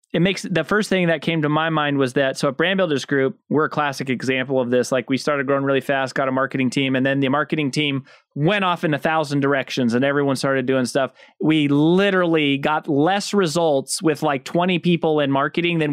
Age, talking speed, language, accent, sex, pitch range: 20-39, 230 wpm, English, American, male, 145-190 Hz